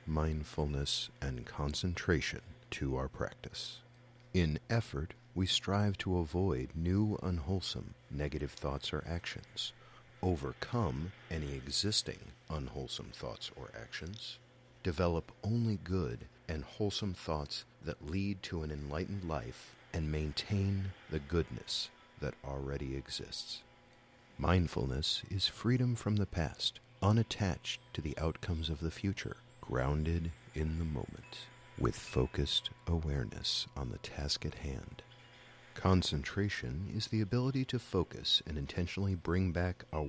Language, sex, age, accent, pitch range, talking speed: English, male, 50-69, American, 75-115 Hz, 120 wpm